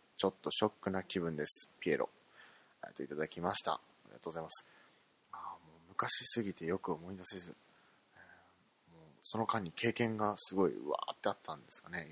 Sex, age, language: male, 20-39, Japanese